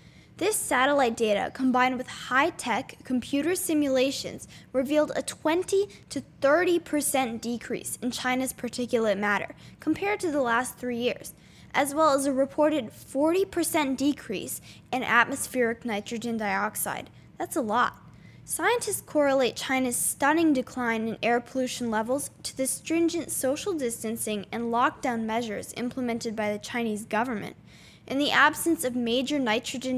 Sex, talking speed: female, 130 wpm